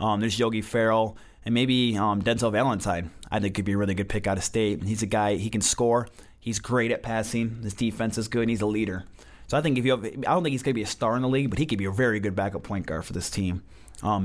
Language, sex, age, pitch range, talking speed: English, male, 20-39, 100-125 Hz, 290 wpm